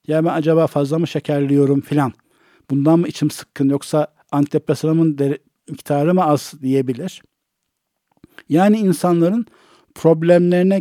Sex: male